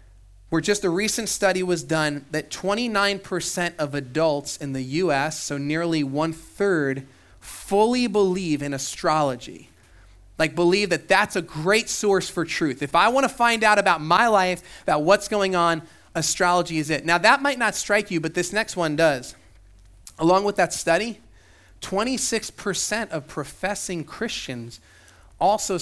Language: English